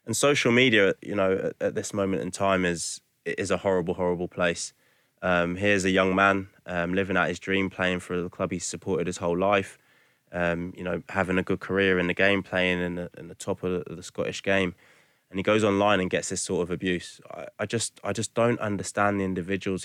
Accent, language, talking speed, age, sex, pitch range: British, English, 230 wpm, 20-39, male, 90-110 Hz